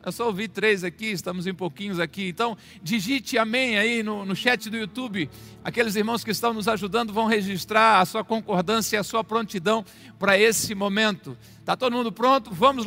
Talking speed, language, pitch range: 190 wpm, Portuguese, 195-250 Hz